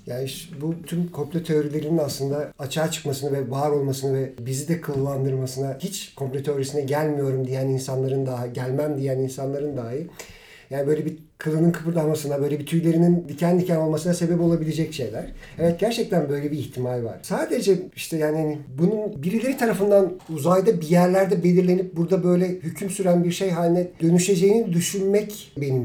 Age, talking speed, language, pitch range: 50-69, 155 wpm, Turkish, 150-200 Hz